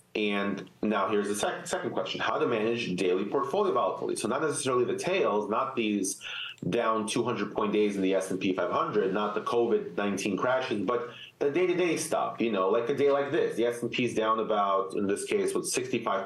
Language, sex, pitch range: English, male, 100-120 Hz